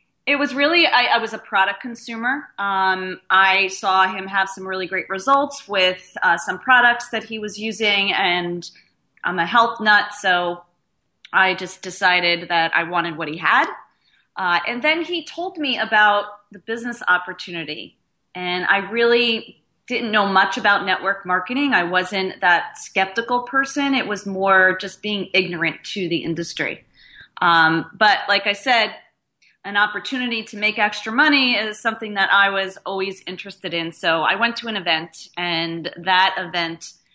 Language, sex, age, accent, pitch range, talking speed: English, female, 30-49, American, 175-220 Hz, 165 wpm